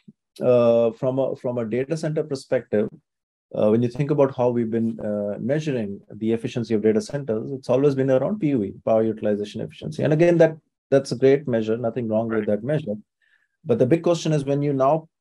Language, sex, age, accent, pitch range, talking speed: English, male, 30-49, Indian, 110-135 Hz, 200 wpm